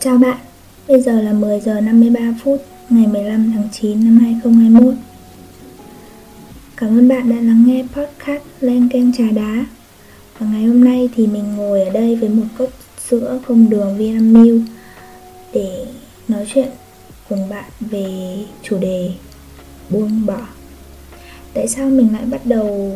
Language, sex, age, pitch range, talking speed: Vietnamese, female, 20-39, 195-240 Hz, 150 wpm